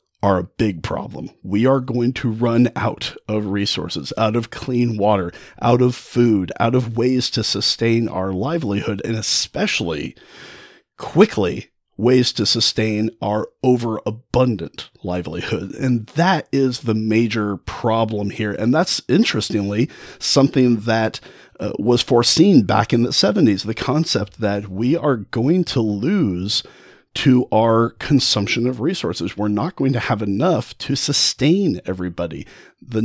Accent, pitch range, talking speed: American, 105-135 Hz, 140 wpm